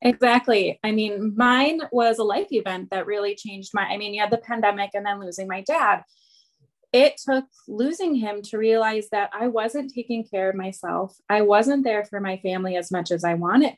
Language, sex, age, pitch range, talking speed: English, female, 20-39, 190-235 Hz, 205 wpm